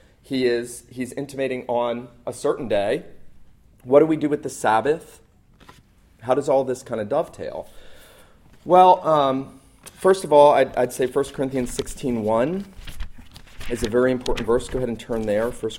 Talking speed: 170 wpm